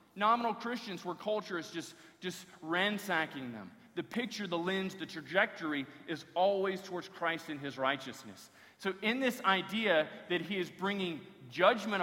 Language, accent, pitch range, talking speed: English, American, 175-250 Hz, 155 wpm